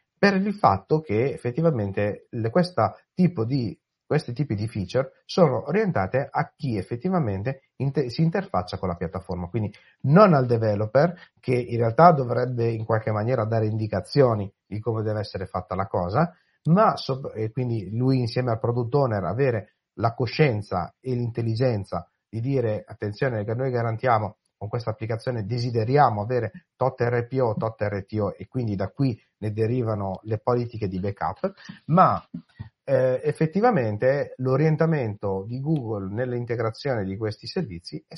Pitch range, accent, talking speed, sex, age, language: 105-135 Hz, native, 150 wpm, male, 30-49, Italian